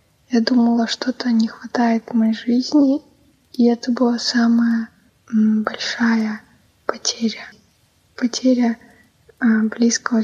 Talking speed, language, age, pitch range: 95 wpm, Russian, 20-39, 225-245 Hz